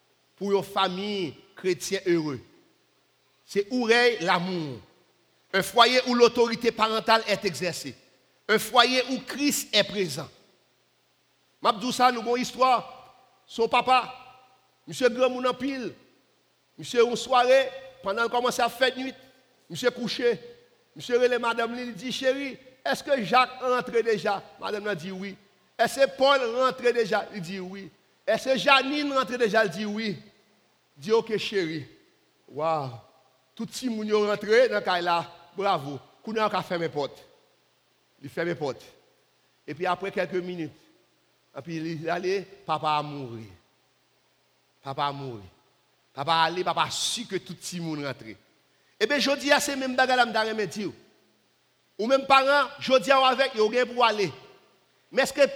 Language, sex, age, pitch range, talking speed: French, male, 50-69, 180-255 Hz, 155 wpm